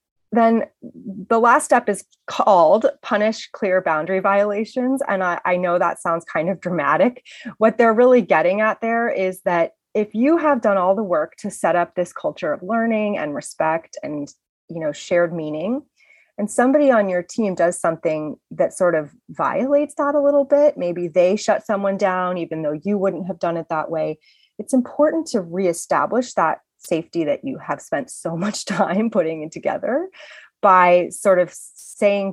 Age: 30-49